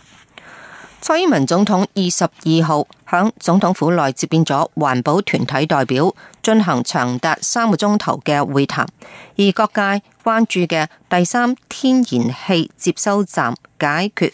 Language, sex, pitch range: Chinese, female, 150-205 Hz